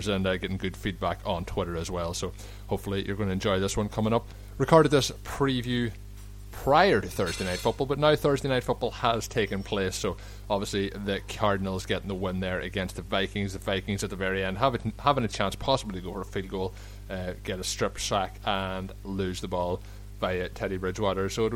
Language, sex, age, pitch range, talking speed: English, male, 30-49, 95-105 Hz, 215 wpm